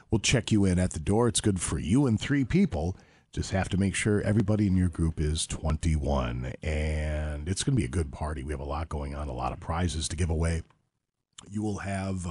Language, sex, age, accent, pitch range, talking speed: English, male, 40-59, American, 85-120 Hz, 240 wpm